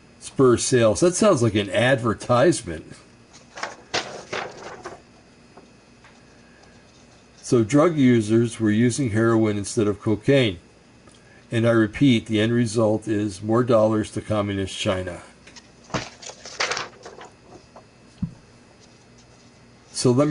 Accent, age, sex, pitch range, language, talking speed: American, 60-79, male, 105-120 Hz, English, 90 wpm